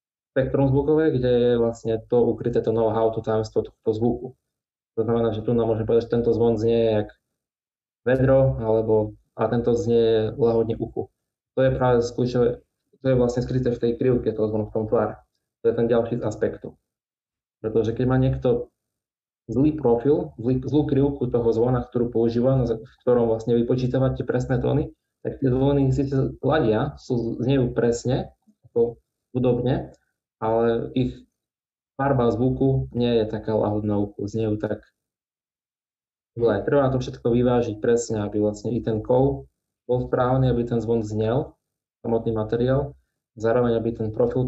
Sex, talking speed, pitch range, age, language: male, 160 wpm, 110-125 Hz, 20-39, Slovak